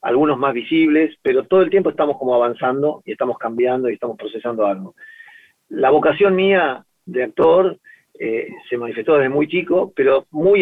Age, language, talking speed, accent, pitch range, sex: 40-59, Spanish, 170 wpm, Argentinian, 125-185 Hz, male